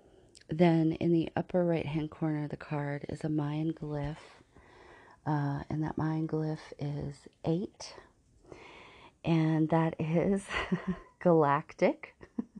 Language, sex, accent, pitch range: English, female, American, 150-175 Hz